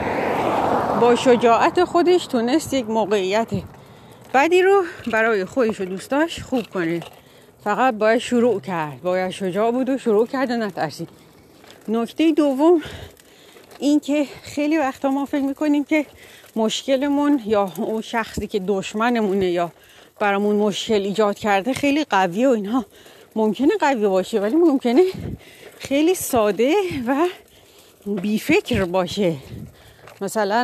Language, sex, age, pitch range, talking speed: Persian, female, 40-59, 205-275 Hz, 120 wpm